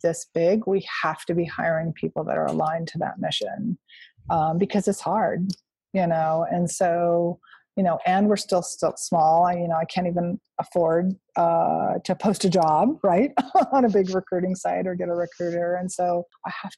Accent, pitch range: American, 170-190 Hz